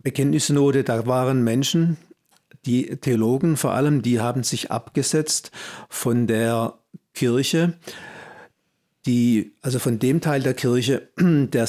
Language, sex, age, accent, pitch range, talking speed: German, male, 50-69, German, 115-140 Hz, 120 wpm